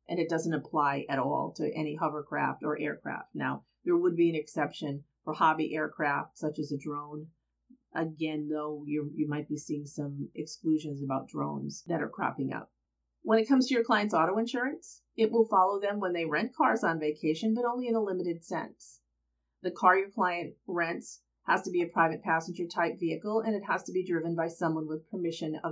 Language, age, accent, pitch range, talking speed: English, 40-59, American, 150-190 Hz, 200 wpm